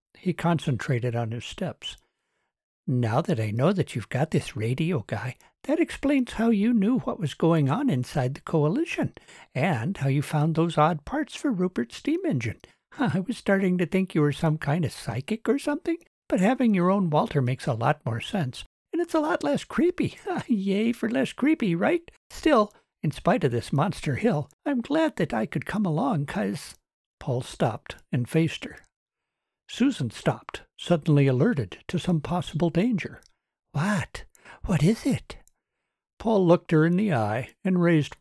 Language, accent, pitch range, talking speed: English, American, 135-215 Hz, 175 wpm